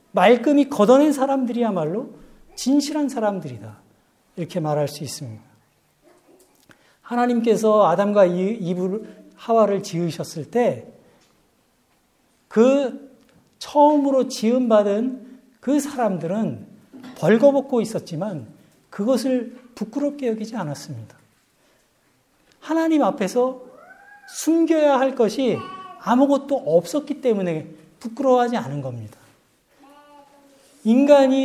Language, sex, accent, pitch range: Korean, male, native, 195-270 Hz